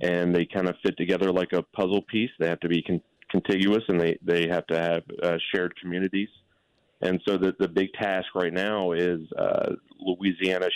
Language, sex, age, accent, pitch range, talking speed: English, male, 30-49, American, 85-95 Hz, 195 wpm